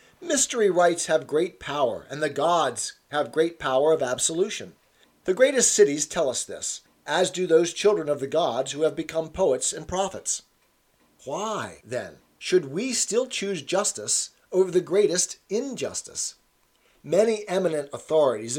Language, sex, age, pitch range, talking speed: English, male, 40-59, 155-210 Hz, 150 wpm